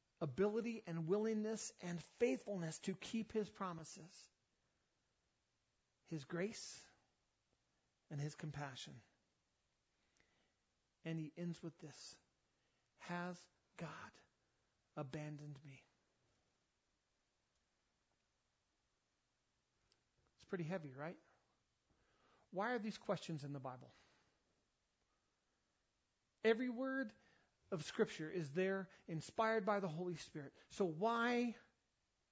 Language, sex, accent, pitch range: English, male, American, 160-210 Hz